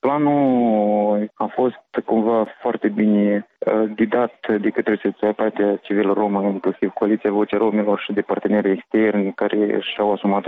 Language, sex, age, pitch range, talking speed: Romanian, male, 20-39, 105-115 Hz, 130 wpm